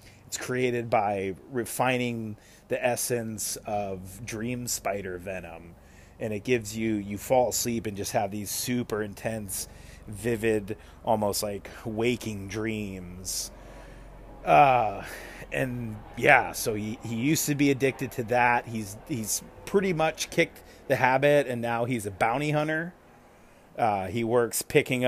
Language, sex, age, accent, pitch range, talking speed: English, male, 30-49, American, 105-130 Hz, 135 wpm